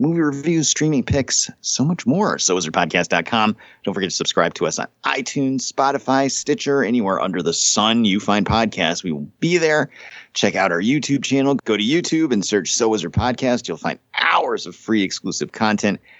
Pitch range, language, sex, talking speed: 100-140 Hz, English, male, 190 wpm